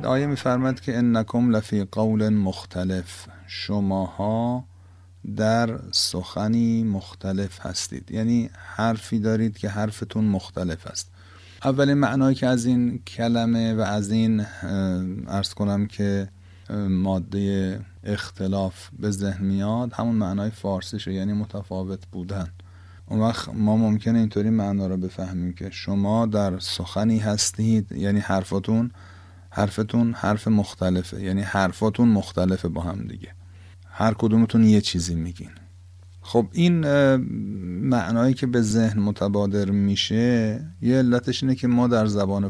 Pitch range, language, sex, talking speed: 95-115 Hz, Persian, male, 125 wpm